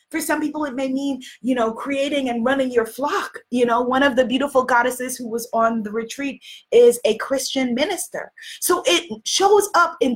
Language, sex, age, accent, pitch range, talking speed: English, female, 30-49, American, 230-345 Hz, 200 wpm